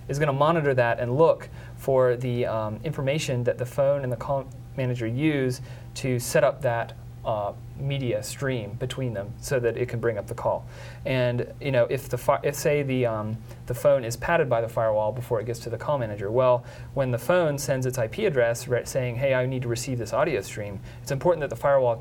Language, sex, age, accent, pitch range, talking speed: English, male, 30-49, American, 120-140 Hz, 225 wpm